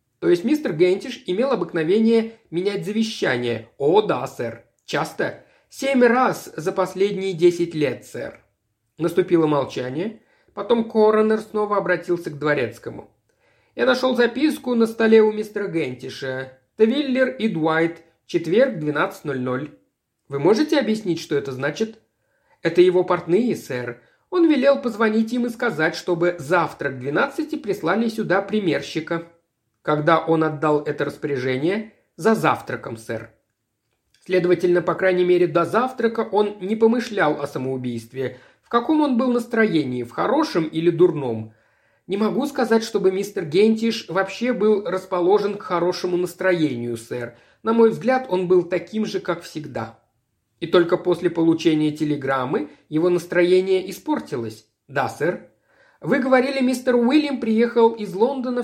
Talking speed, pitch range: 130 wpm, 155-225 Hz